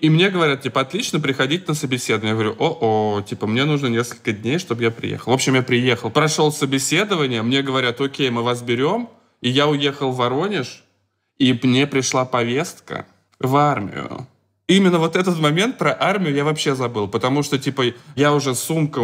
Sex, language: male, Russian